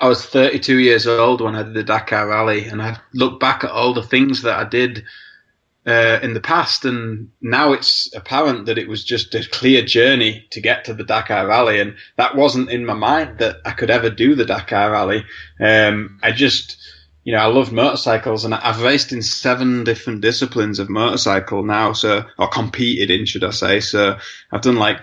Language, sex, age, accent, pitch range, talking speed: English, male, 20-39, British, 110-125 Hz, 205 wpm